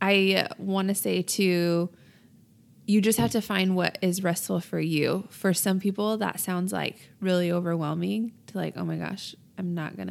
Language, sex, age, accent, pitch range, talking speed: English, female, 20-39, American, 165-200 Hz, 185 wpm